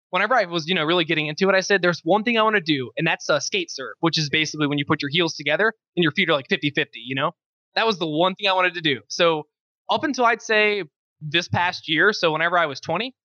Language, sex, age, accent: English, male, 20-39, American